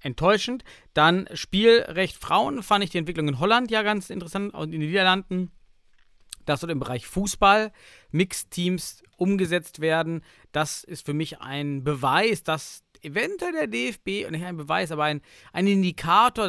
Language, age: German, 50-69